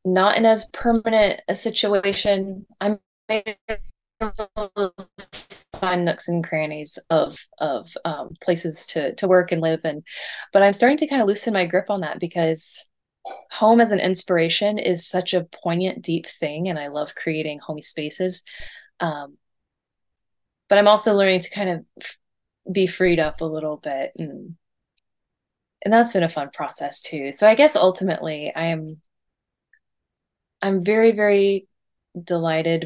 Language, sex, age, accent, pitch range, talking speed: English, female, 20-39, American, 160-205 Hz, 150 wpm